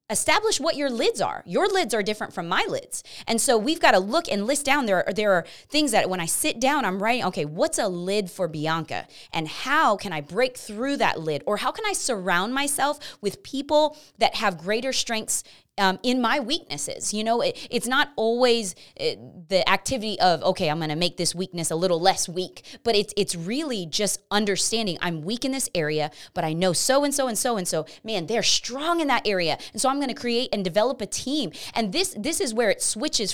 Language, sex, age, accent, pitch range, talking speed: English, female, 20-39, American, 185-265 Hz, 225 wpm